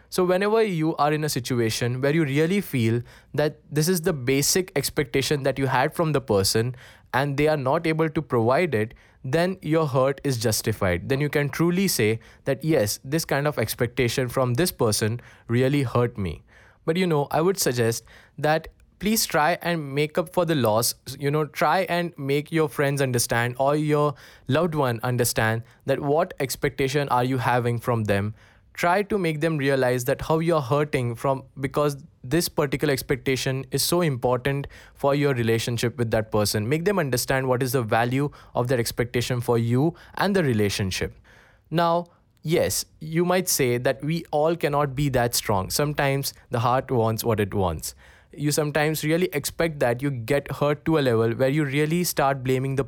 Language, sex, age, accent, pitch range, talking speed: English, male, 10-29, Indian, 120-155 Hz, 185 wpm